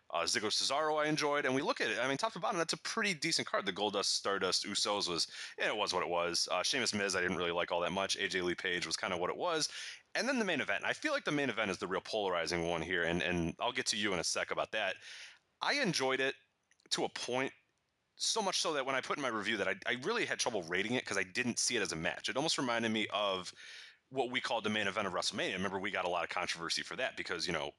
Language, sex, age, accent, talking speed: English, male, 30-49, American, 295 wpm